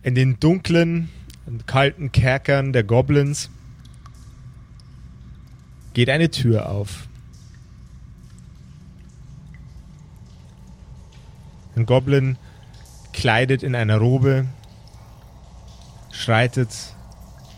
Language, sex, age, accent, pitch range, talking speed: German, male, 30-49, German, 100-135 Hz, 65 wpm